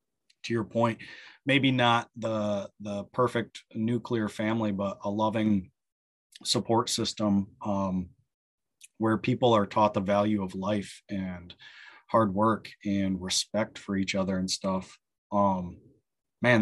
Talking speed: 130 wpm